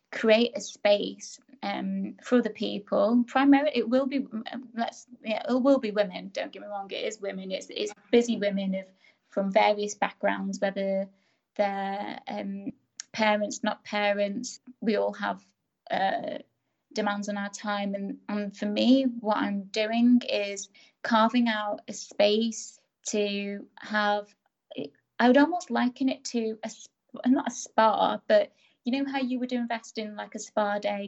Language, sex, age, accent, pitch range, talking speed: English, female, 20-39, British, 200-245 Hz, 160 wpm